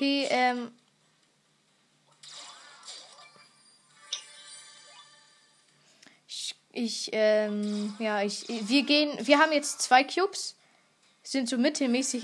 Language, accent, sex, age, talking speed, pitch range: German, German, female, 20-39, 75 wpm, 230-290 Hz